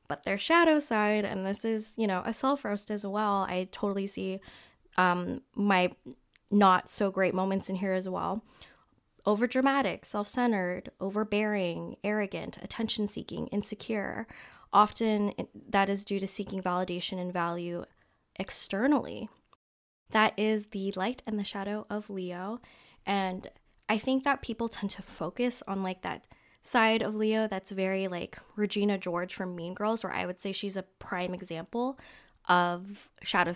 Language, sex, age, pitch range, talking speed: English, female, 20-39, 190-215 Hz, 155 wpm